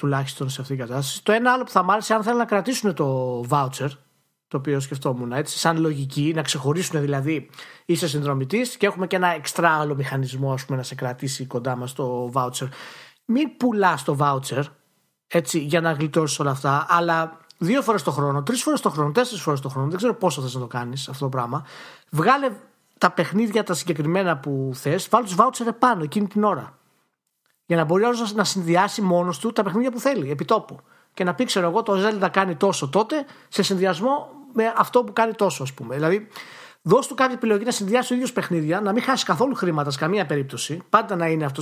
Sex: male